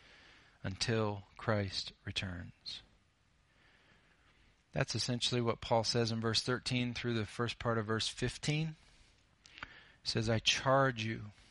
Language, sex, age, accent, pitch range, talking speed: English, male, 40-59, American, 110-125 Hz, 120 wpm